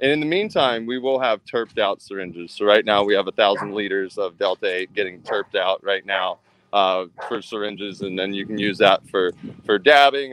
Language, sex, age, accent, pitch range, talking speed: English, male, 20-39, American, 110-145 Hz, 220 wpm